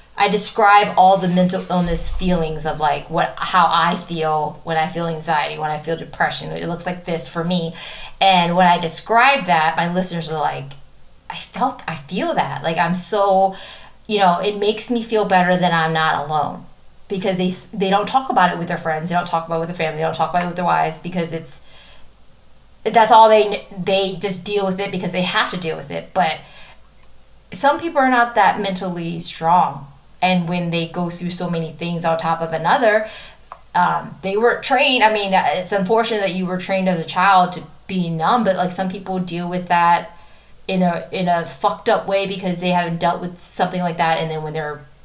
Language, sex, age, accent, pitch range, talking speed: English, female, 30-49, American, 165-195 Hz, 215 wpm